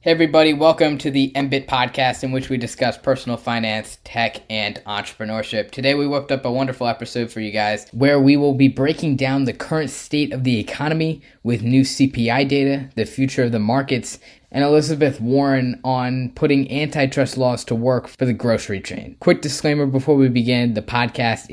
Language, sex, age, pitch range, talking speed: English, male, 10-29, 115-135 Hz, 185 wpm